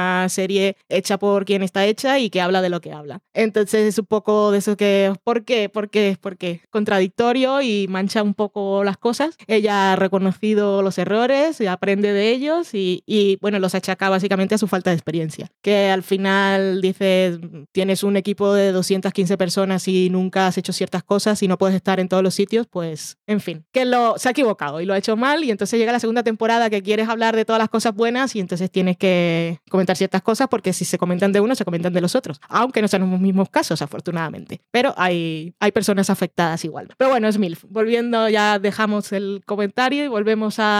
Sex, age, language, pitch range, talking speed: female, 20-39, Spanish, 185-215 Hz, 215 wpm